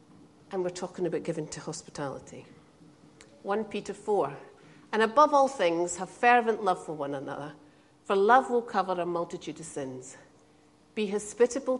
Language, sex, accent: English, female, British